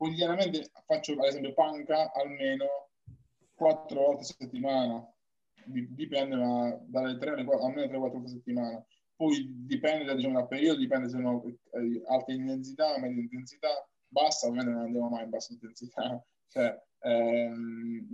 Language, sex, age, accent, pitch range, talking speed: Italian, male, 20-39, native, 120-155 Hz, 140 wpm